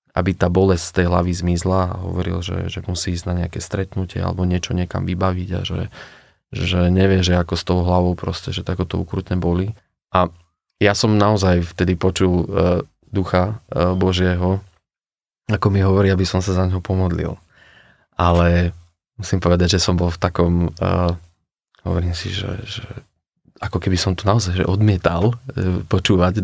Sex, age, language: male, 20-39, Slovak